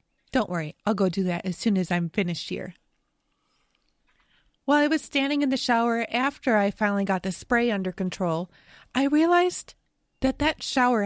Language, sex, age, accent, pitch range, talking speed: English, female, 20-39, American, 210-270 Hz, 175 wpm